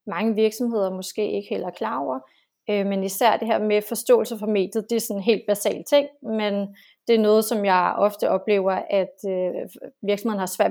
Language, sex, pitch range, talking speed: Danish, female, 200-230 Hz, 205 wpm